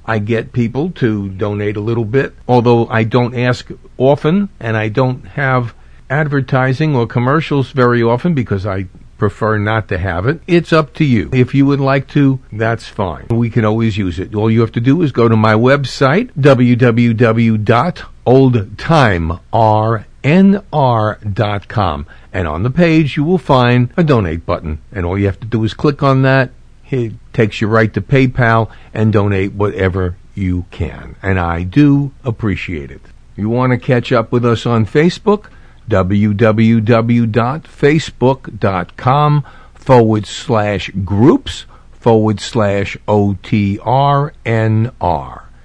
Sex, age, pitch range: male, 50-69, 105-135 Hz